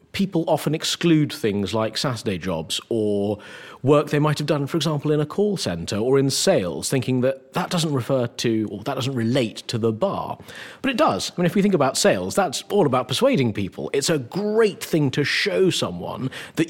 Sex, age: male, 40-59